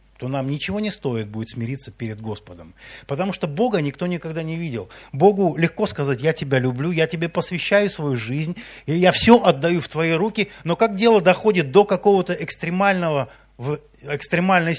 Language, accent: Russian, native